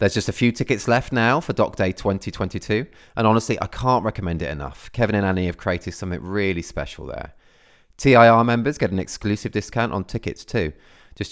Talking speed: 195 wpm